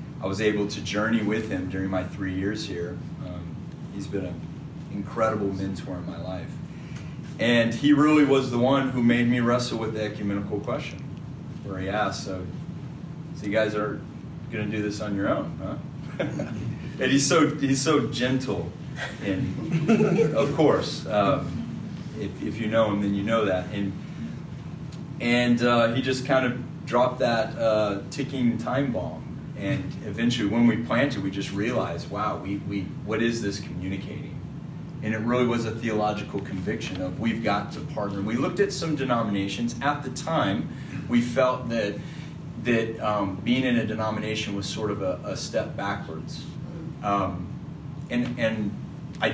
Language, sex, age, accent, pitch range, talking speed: English, male, 30-49, American, 105-145 Hz, 170 wpm